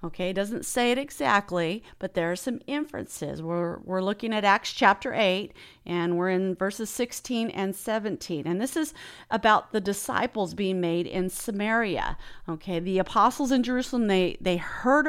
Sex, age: female, 40-59